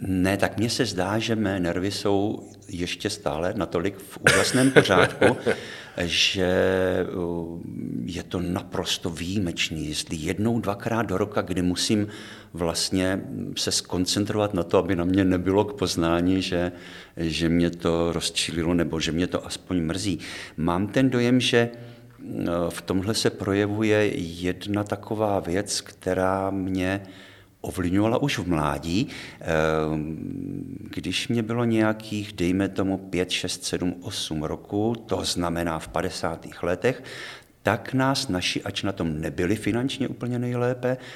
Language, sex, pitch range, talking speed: Czech, male, 85-105 Hz, 135 wpm